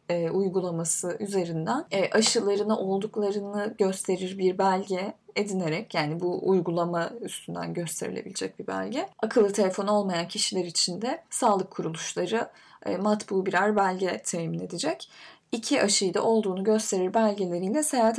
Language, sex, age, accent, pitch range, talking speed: Turkish, female, 10-29, native, 185-220 Hz, 125 wpm